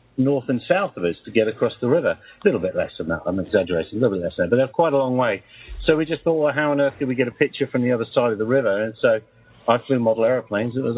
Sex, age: male, 50-69